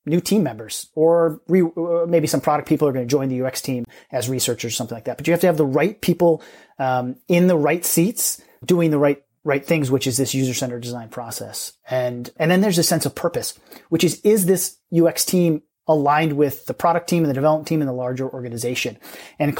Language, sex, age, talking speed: English, male, 30-49, 235 wpm